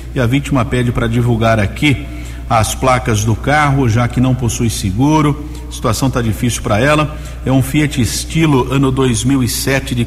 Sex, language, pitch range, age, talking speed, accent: male, Portuguese, 115-140 Hz, 50-69, 175 wpm, Brazilian